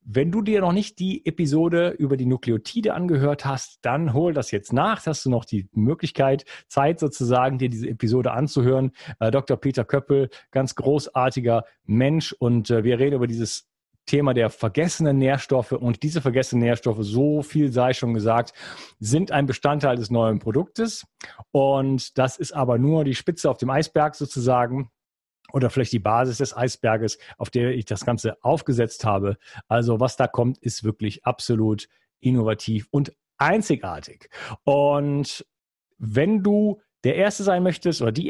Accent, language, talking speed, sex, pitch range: German, German, 165 wpm, male, 120-150 Hz